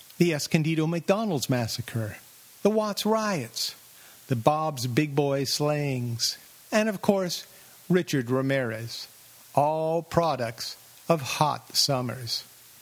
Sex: male